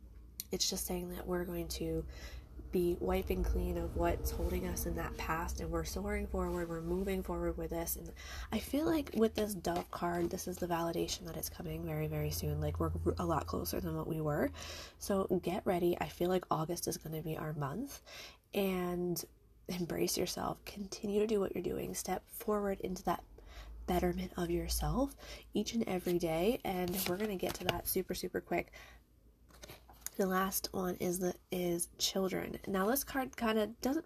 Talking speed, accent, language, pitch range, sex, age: 190 wpm, American, English, 160-205 Hz, female, 20-39